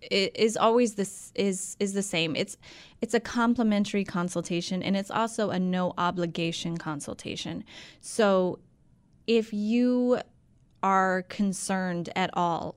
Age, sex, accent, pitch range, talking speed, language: 20-39, female, American, 175-215 Hz, 120 wpm, English